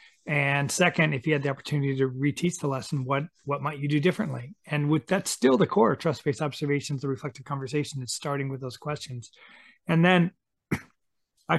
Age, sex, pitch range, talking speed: 30-49, male, 135-160 Hz, 190 wpm